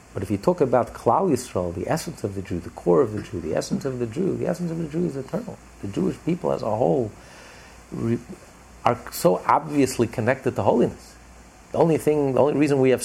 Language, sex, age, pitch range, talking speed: English, male, 50-69, 90-150 Hz, 215 wpm